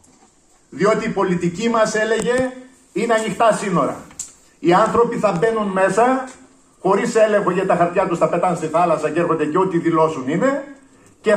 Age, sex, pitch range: 50-69, male, 165-235 Hz